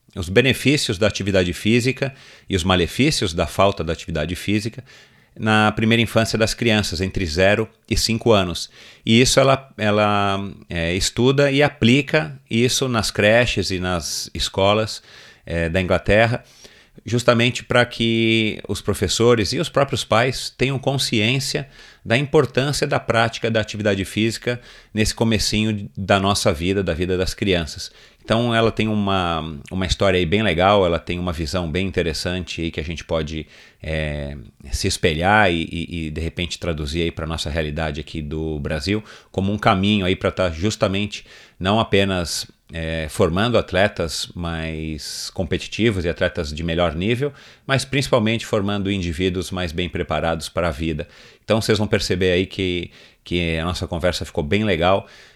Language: Portuguese